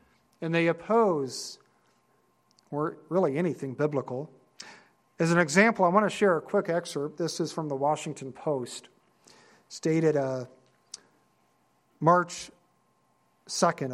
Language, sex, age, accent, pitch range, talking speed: English, male, 50-69, American, 145-175 Hz, 120 wpm